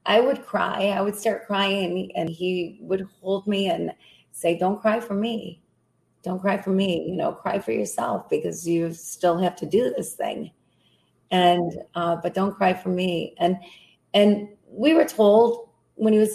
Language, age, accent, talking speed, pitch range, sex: English, 30-49, American, 185 wpm, 180-220 Hz, female